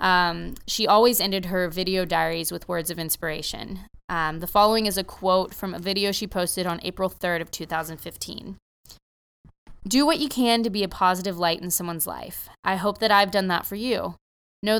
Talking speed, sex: 195 wpm, female